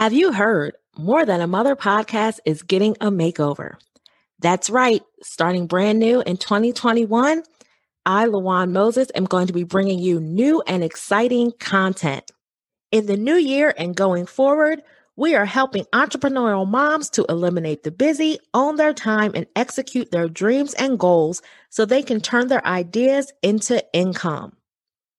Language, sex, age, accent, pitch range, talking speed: English, female, 30-49, American, 180-255 Hz, 155 wpm